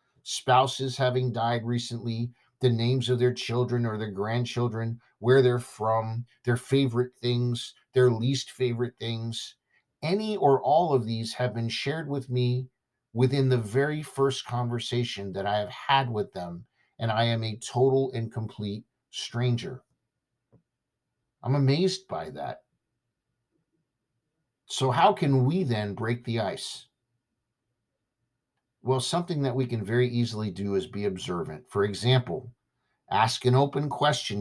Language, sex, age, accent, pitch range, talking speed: English, male, 50-69, American, 115-135 Hz, 140 wpm